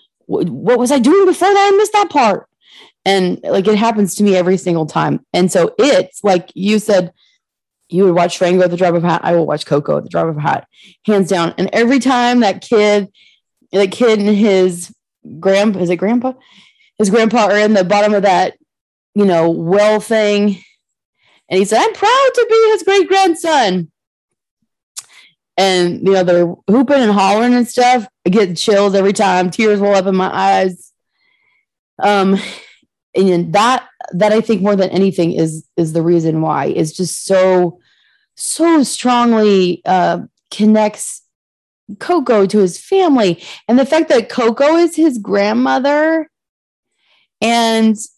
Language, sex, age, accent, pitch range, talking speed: English, female, 20-39, American, 185-245 Hz, 170 wpm